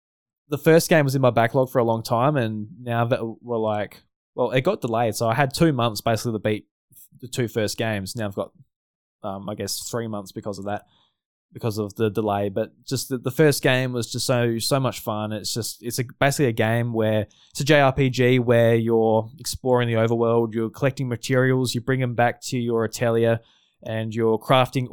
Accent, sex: Australian, male